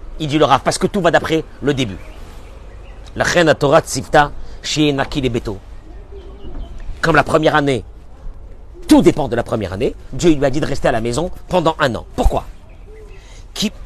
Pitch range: 95-155 Hz